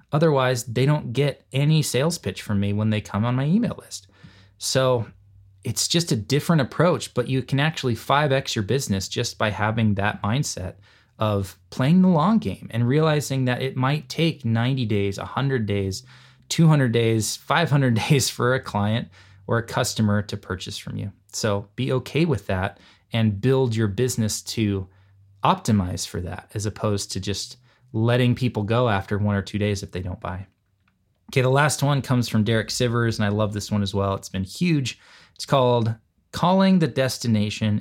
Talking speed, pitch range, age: 185 wpm, 100-130 Hz, 20-39